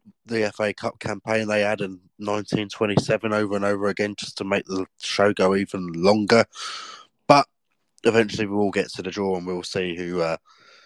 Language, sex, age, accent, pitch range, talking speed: English, male, 20-39, British, 95-115 Hz, 195 wpm